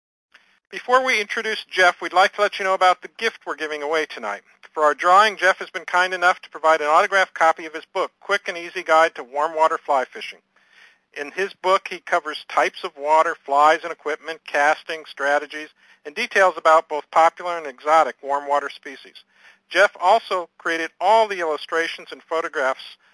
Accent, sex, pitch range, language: American, male, 150-190 Hz, English